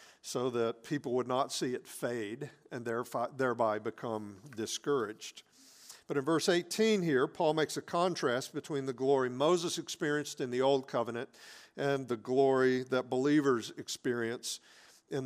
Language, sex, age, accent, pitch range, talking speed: English, male, 50-69, American, 125-160 Hz, 150 wpm